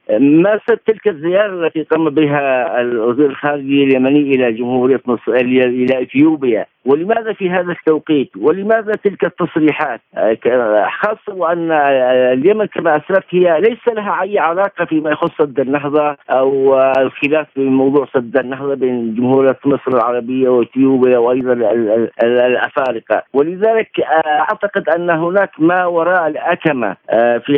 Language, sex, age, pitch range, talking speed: Arabic, male, 50-69, 135-175 Hz, 120 wpm